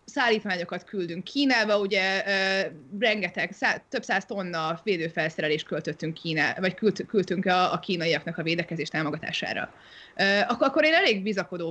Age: 30-49